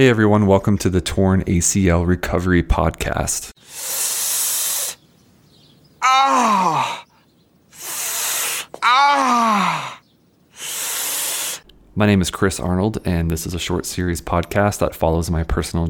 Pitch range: 85-100 Hz